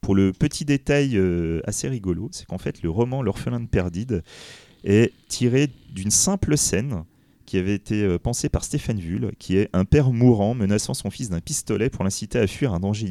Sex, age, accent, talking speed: male, 30-49, French, 190 wpm